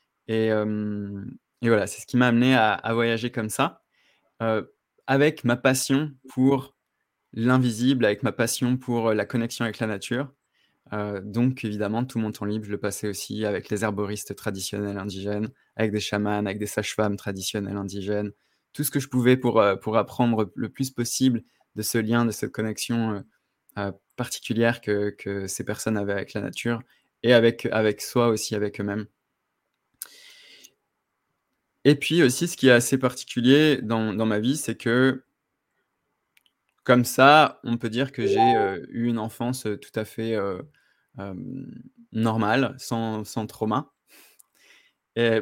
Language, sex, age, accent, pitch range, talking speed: French, male, 20-39, French, 105-130 Hz, 160 wpm